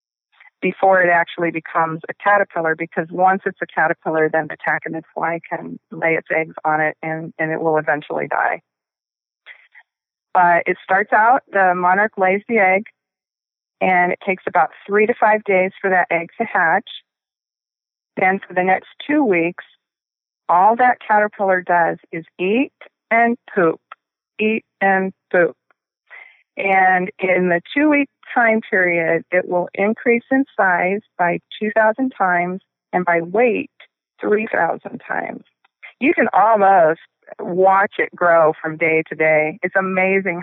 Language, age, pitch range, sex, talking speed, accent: English, 40-59, 170-210 Hz, female, 145 wpm, American